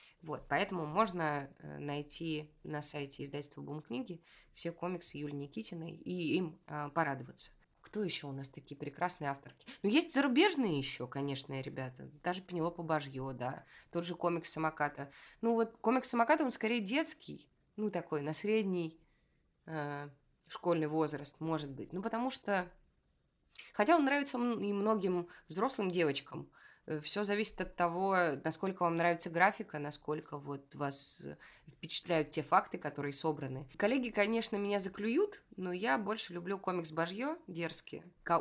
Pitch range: 145-195 Hz